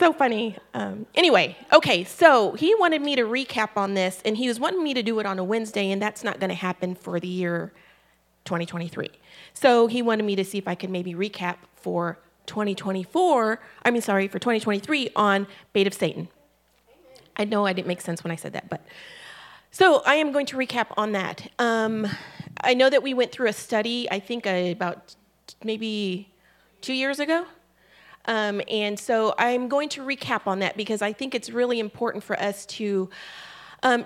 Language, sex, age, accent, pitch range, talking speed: English, female, 30-49, American, 195-240 Hz, 195 wpm